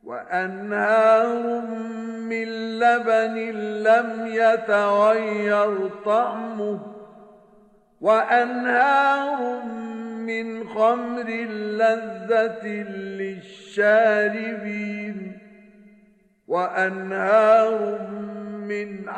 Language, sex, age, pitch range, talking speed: Arabic, male, 50-69, 210-225 Hz, 40 wpm